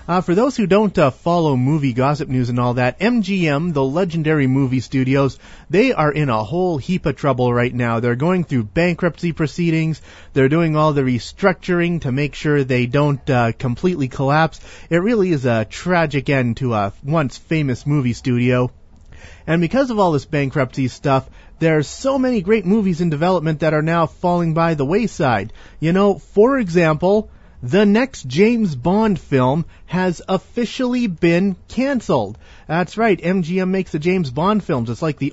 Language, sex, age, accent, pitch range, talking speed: English, male, 40-59, American, 130-180 Hz, 175 wpm